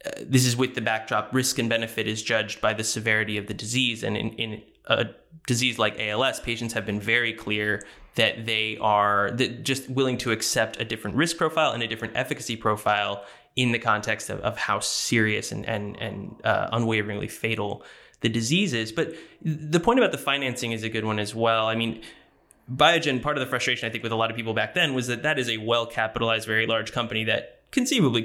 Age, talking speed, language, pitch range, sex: 20-39, 210 wpm, English, 110-130 Hz, male